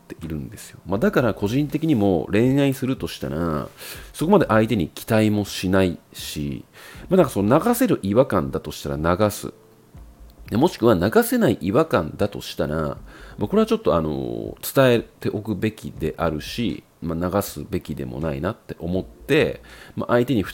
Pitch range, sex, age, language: 80-120 Hz, male, 40-59, Japanese